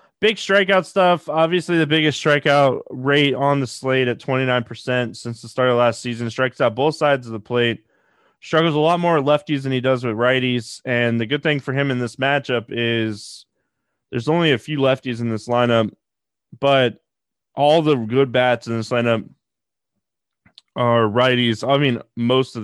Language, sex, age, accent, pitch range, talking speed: English, male, 20-39, American, 120-145 Hz, 180 wpm